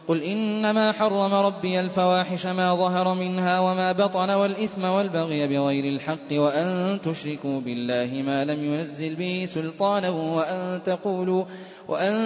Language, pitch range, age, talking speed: Arabic, 165-190 Hz, 20-39, 115 wpm